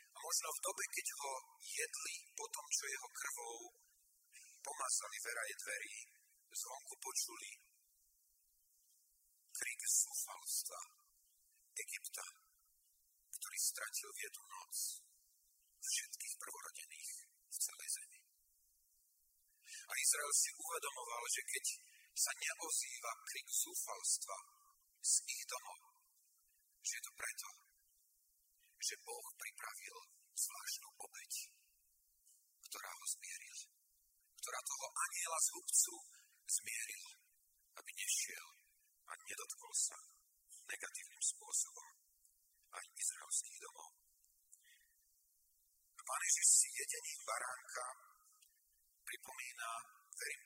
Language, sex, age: Slovak, male, 50-69